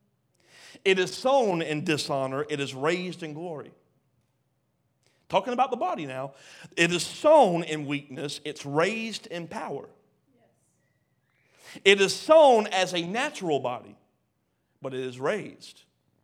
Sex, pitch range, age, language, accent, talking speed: male, 130-180 Hz, 40-59, English, American, 130 wpm